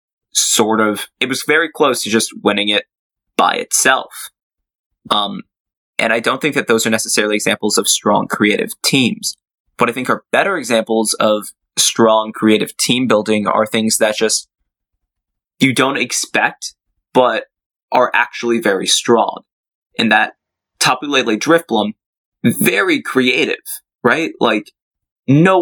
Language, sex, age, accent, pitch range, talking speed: English, male, 20-39, American, 110-130 Hz, 135 wpm